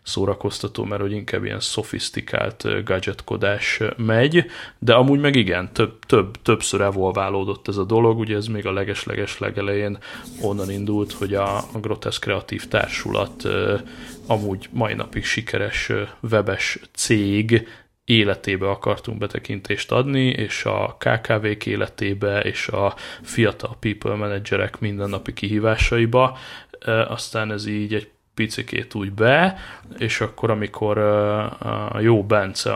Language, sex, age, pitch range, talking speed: Hungarian, male, 20-39, 100-115 Hz, 125 wpm